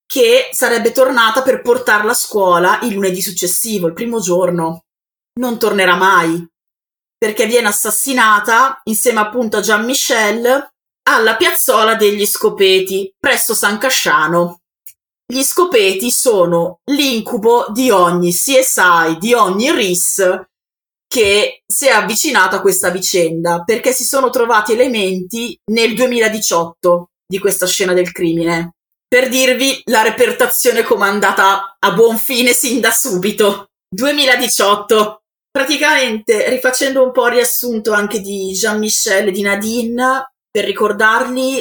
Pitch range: 195-260 Hz